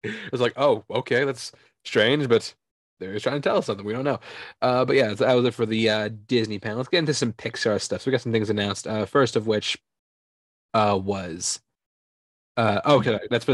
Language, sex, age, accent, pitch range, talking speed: English, male, 20-39, American, 100-120 Hz, 220 wpm